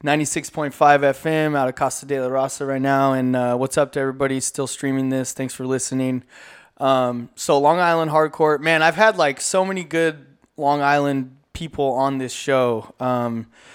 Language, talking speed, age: English, 180 wpm, 20-39